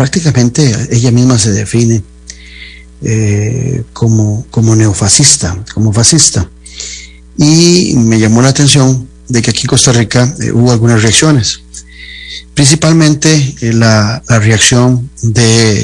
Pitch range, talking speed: 105-125 Hz, 120 wpm